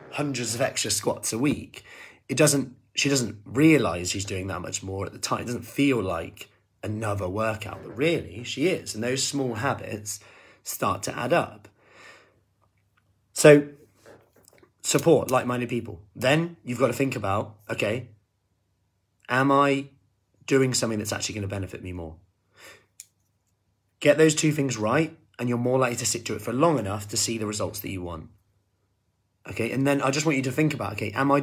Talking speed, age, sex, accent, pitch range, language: 180 wpm, 30-49, male, British, 100-130 Hz, English